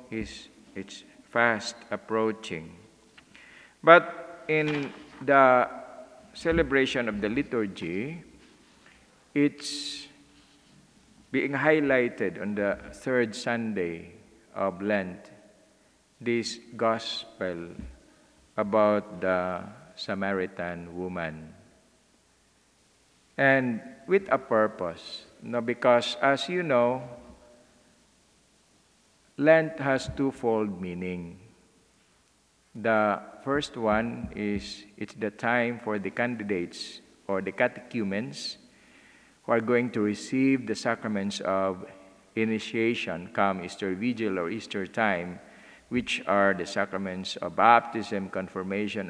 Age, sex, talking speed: 50-69, male, 95 wpm